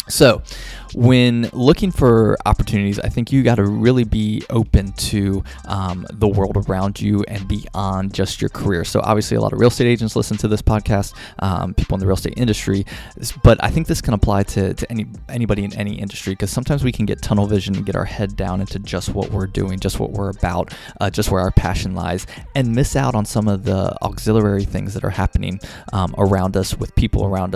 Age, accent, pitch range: 20-39, American, 95-115 Hz